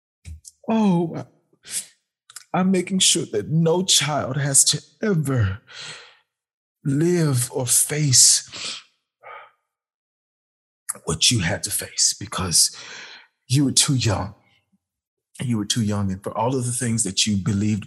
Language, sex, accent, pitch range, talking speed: English, male, American, 120-180 Hz, 120 wpm